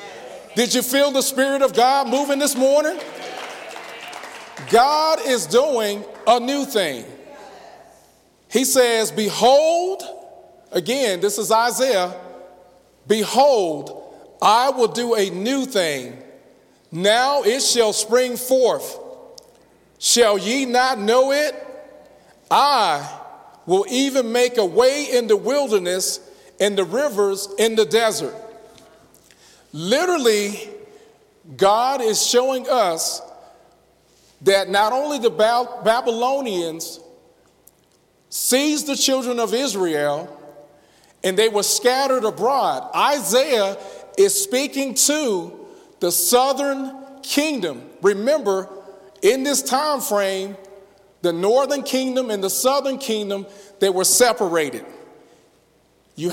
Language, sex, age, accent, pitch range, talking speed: English, male, 40-59, American, 200-275 Hz, 105 wpm